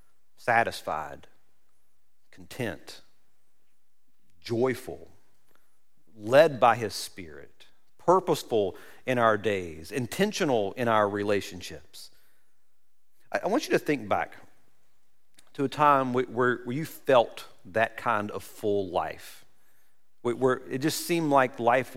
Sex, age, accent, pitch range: male, 40-59, American, 110-135 Hz